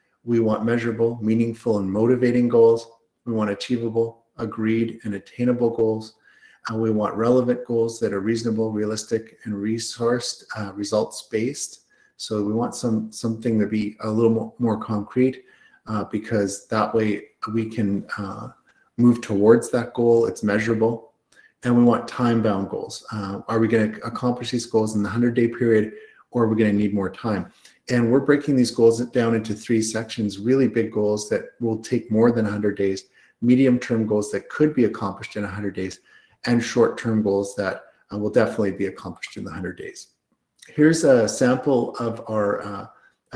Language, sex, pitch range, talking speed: English, male, 105-120 Hz, 165 wpm